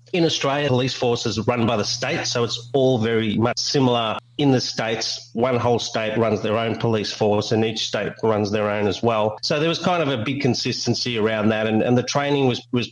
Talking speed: 230 wpm